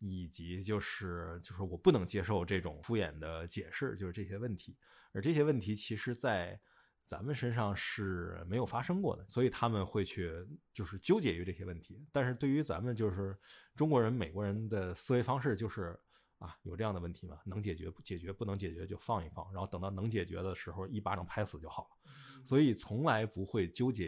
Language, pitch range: Chinese, 95-125 Hz